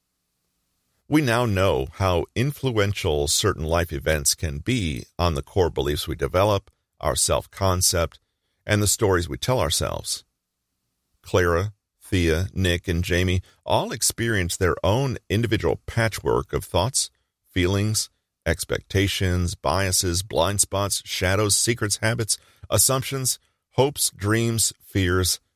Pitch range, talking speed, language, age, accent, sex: 85-105 Hz, 115 wpm, English, 40-59, American, male